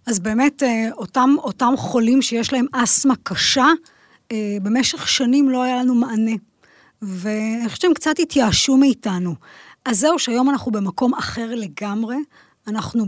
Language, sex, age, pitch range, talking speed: Hebrew, female, 20-39, 215-270 Hz, 130 wpm